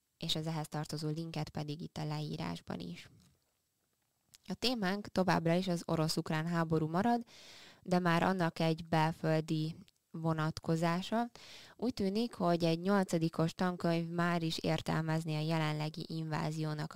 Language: Hungarian